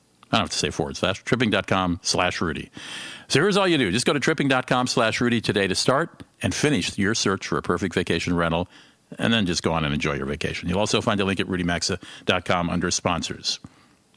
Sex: male